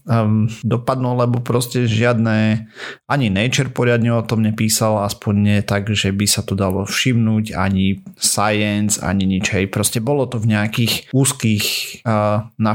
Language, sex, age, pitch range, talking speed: Slovak, male, 30-49, 105-130 Hz, 150 wpm